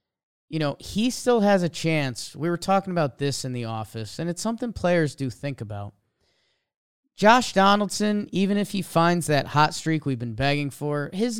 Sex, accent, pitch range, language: male, American, 135-195 Hz, English